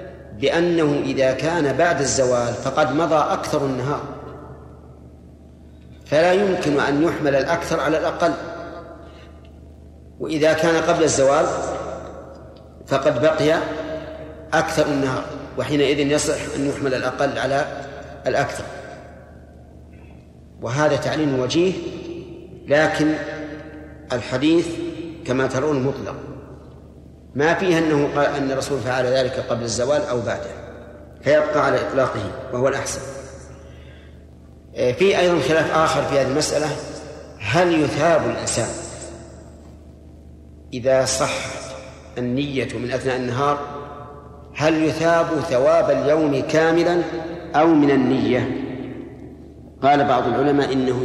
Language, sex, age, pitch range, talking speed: Arabic, male, 50-69, 115-155 Hz, 100 wpm